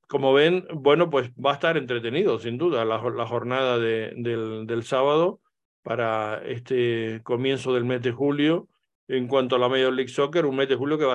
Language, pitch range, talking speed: Spanish, 120-145 Hz, 205 wpm